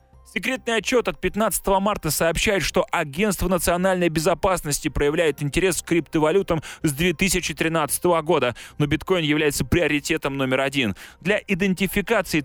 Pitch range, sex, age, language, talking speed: 150-190 Hz, male, 20-39, Russian, 120 wpm